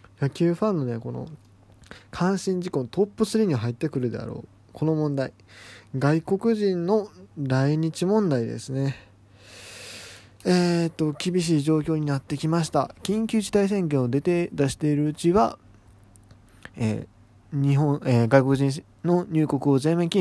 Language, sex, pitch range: Japanese, male, 115-170 Hz